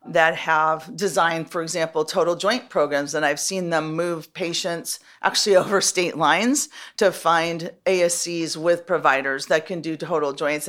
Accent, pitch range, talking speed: American, 165-205 Hz, 155 wpm